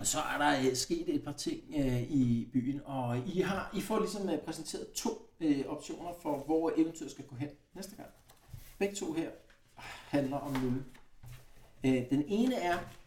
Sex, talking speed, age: male, 185 wpm, 60-79